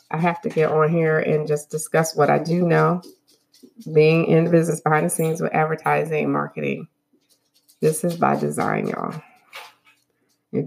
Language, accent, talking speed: English, American, 170 wpm